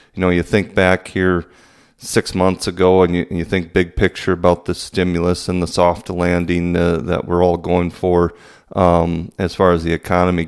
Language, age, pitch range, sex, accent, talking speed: English, 30-49, 85-100 Hz, male, American, 195 wpm